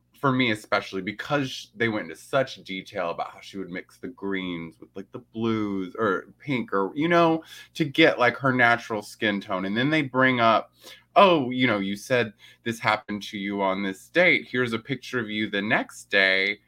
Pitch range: 100-145 Hz